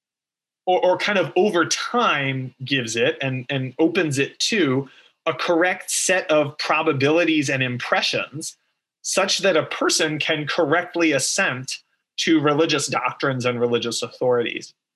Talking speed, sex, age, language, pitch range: 130 wpm, male, 30-49, English, 130-175 Hz